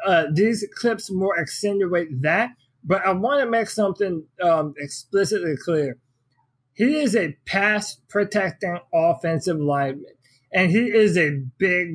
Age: 20-39